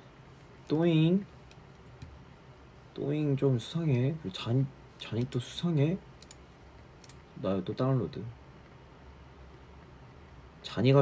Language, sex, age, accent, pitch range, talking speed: English, male, 40-59, Korean, 80-125 Hz, 65 wpm